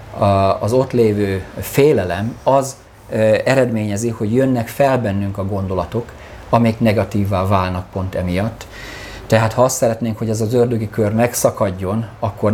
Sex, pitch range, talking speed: male, 95-110 Hz, 135 wpm